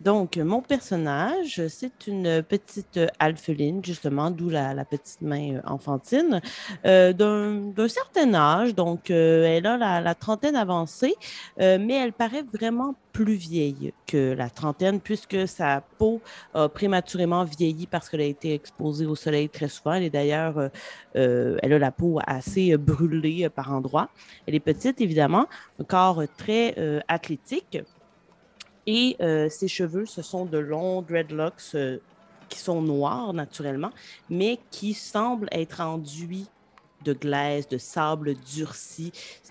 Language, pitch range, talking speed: French, 145-190 Hz, 150 wpm